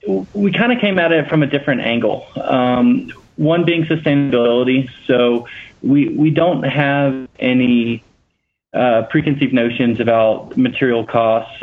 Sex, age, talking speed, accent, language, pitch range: male, 20-39, 135 wpm, American, English, 120-140 Hz